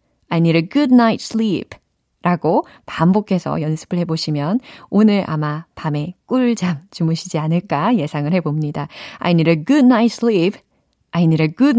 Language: Korean